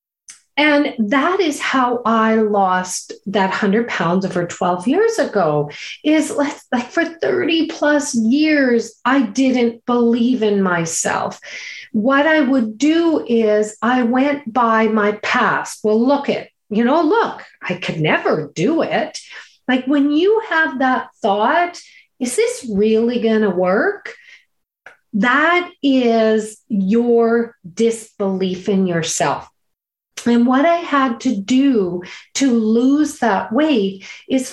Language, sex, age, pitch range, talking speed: English, female, 40-59, 215-285 Hz, 130 wpm